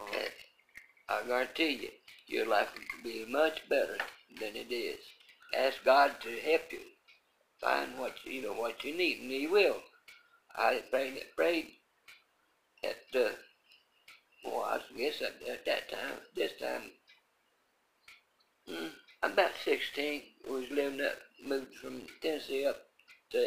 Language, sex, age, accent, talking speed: English, male, 60-79, American, 135 wpm